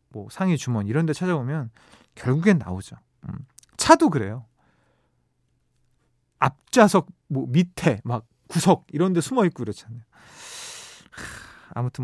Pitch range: 125-185 Hz